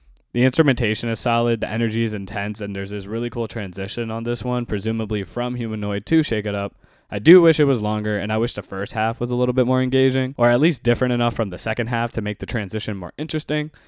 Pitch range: 105-130 Hz